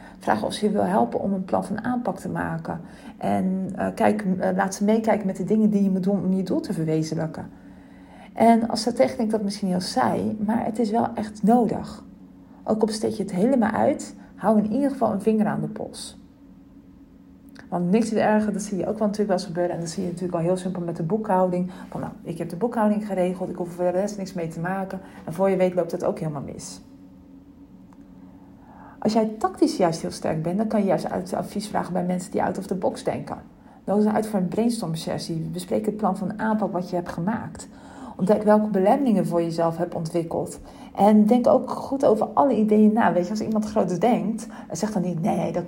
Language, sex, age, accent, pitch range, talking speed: Dutch, female, 40-59, Dutch, 180-220 Hz, 230 wpm